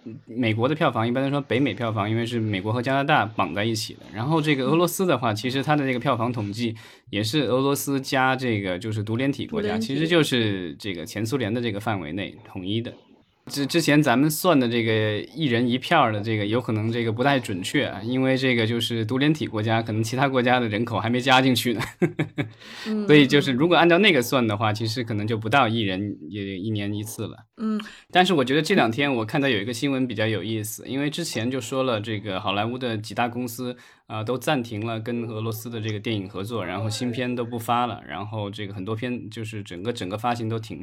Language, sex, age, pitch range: Chinese, male, 20-39, 110-135 Hz